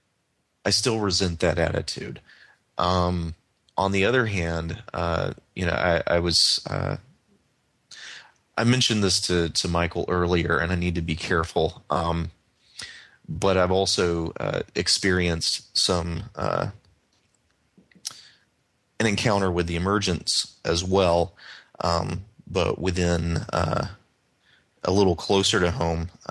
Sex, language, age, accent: male, English, 30-49, American